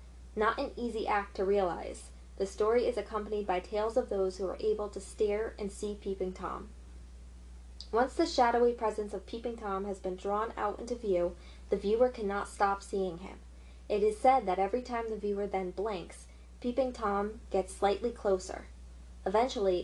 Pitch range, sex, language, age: 180-220 Hz, female, English, 20-39